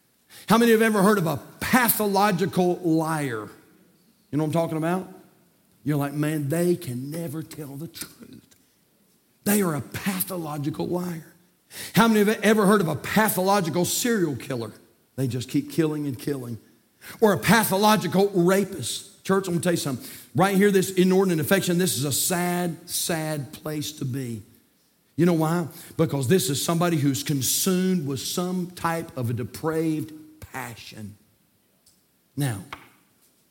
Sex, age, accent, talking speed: male, 50-69, American, 150 wpm